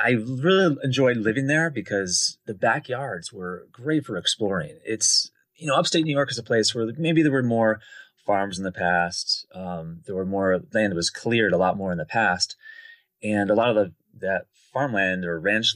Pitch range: 95-135 Hz